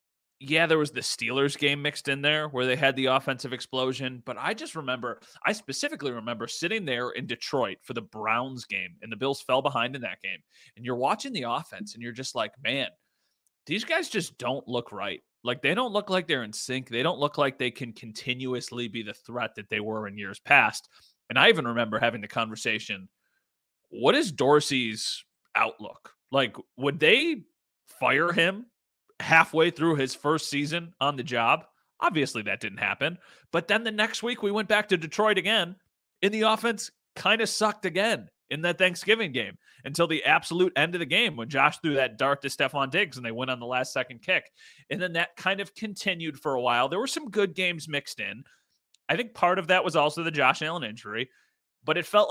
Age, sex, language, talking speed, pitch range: 30-49, male, English, 210 wpm, 125-185 Hz